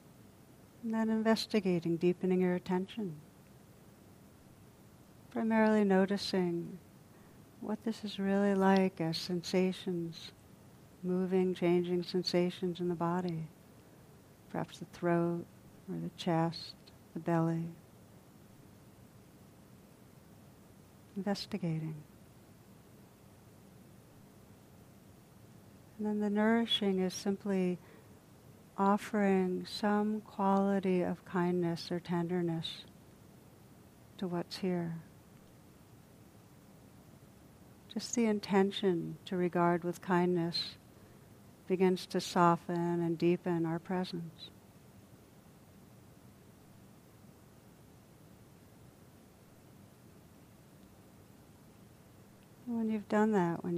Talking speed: 75 wpm